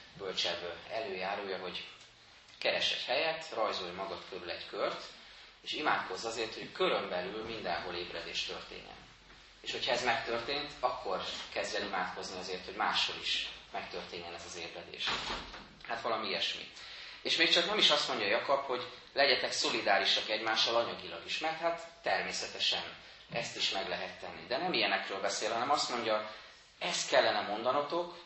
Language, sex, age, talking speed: Hungarian, male, 30-49, 145 wpm